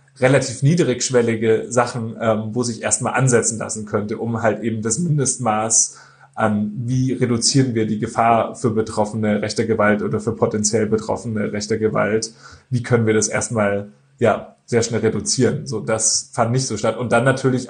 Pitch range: 110-125 Hz